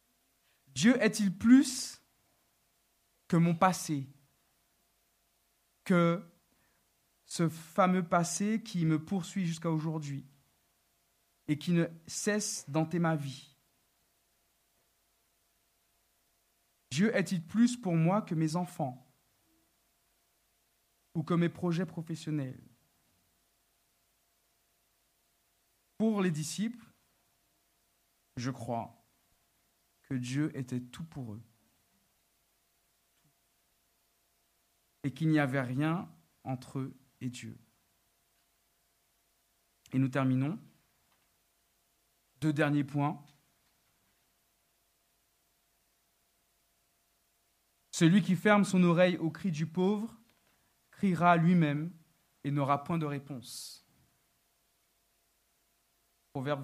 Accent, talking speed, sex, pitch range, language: French, 85 wpm, male, 135-180 Hz, French